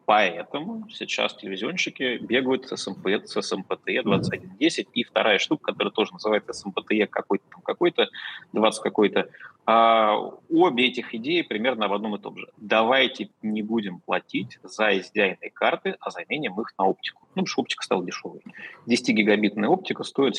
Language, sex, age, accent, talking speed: Russian, male, 20-39, native, 155 wpm